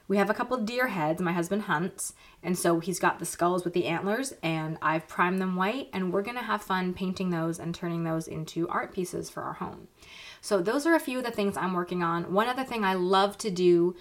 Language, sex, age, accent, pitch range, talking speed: English, female, 20-39, American, 170-215 Hz, 245 wpm